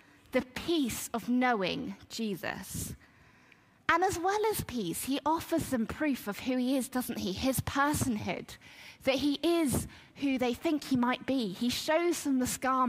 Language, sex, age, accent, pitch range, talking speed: English, female, 20-39, British, 230-295 Hz, 170 wpm